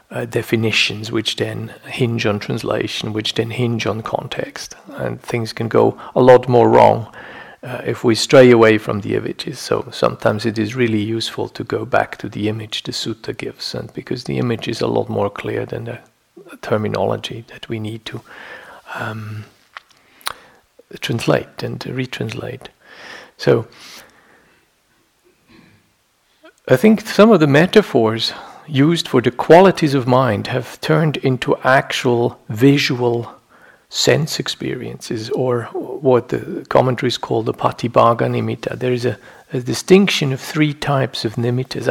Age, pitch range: 50-69, 110-135 Hz